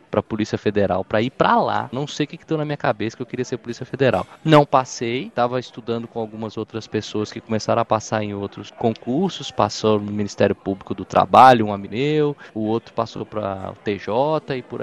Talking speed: 210 wpm